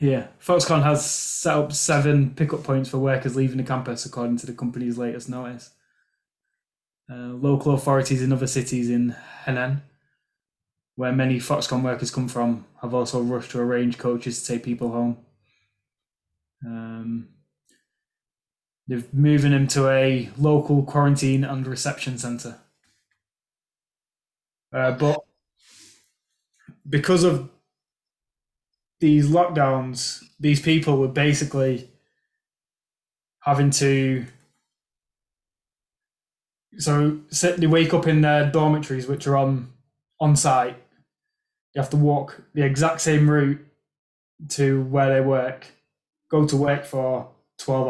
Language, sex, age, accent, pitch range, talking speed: English, male, 20-39, British, 125-145 Hz, 120 wpm